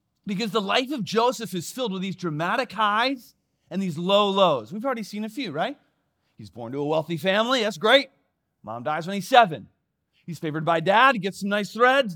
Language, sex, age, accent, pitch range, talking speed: English, male, 30-49, American, 145-235 Hz, 210 wpm